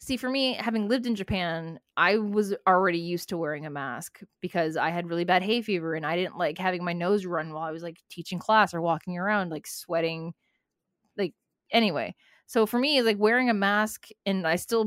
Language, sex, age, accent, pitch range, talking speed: English, female, 20-39, American, 170-215 Hz, 215 wpm